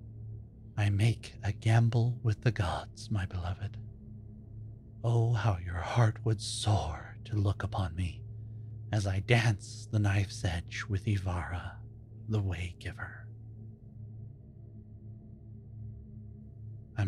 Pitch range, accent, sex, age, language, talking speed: 100-110 Hz, American, male, 30-49, English, 105 wpm